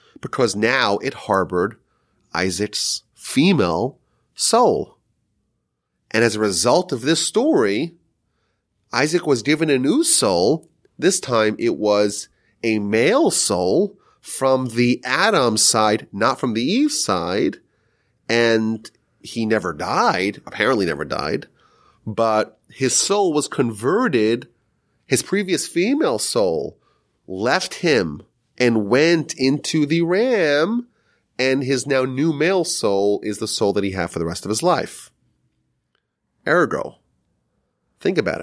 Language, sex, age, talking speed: English, male, 30-49, 125 wpm